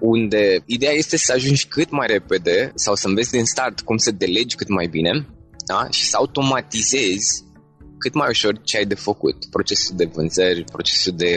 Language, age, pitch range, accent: Romanian, 20-39, 100-140 Hz, native